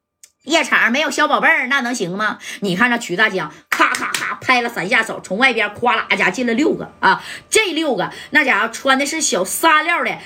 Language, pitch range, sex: Chinese, 215-300 Hz, female